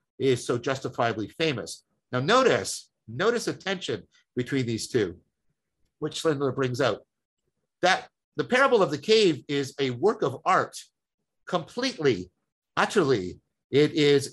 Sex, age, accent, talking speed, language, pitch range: male, 50-69, American, 130 wpm, English, 120-170 Hz